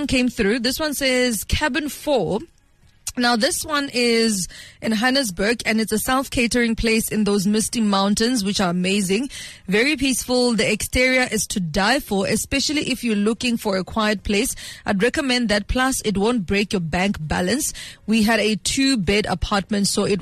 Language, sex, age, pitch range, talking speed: English, female, 20-39, 200-255 Hz, 170 wpm